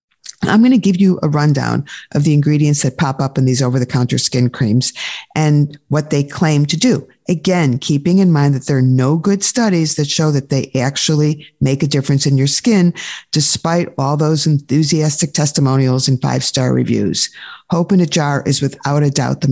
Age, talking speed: 50-69, 190 wpm